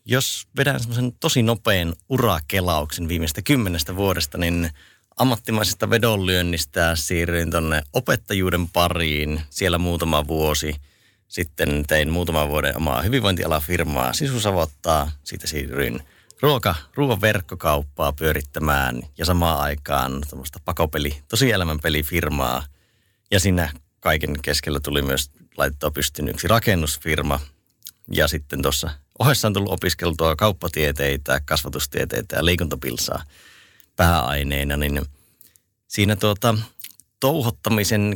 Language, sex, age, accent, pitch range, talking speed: Finnish, male, 30-49, native, 75-100 Hz, 100 wpm